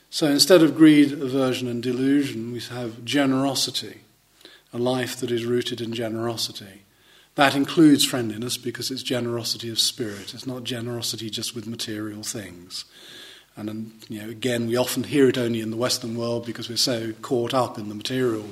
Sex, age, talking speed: male, 40-59, 165 wpm